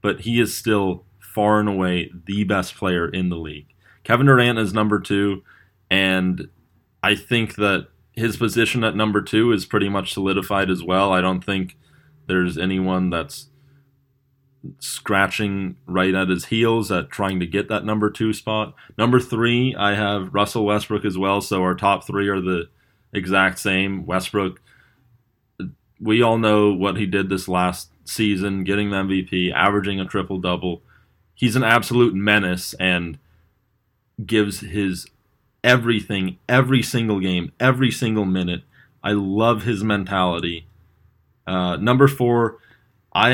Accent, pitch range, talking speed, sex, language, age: American, 95-115 Hz, 145 wpm, male, English, 20-39